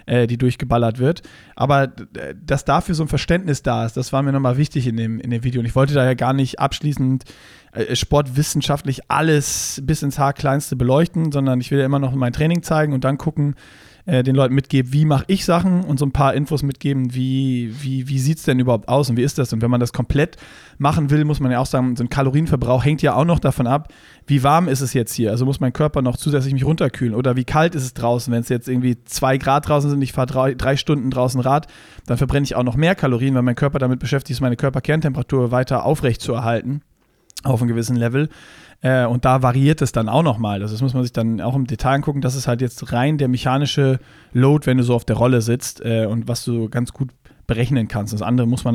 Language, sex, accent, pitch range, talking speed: German, male, German, 120-145 Hz, 235 wpm